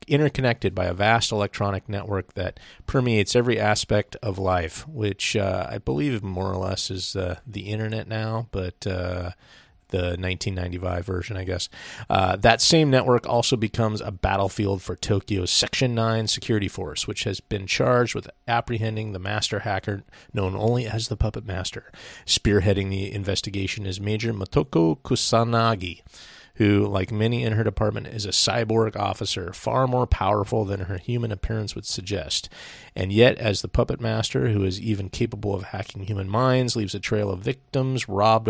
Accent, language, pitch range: American, English, 95-115 Hz